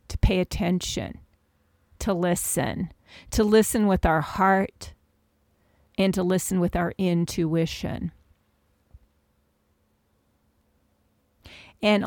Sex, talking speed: female, 80 wpm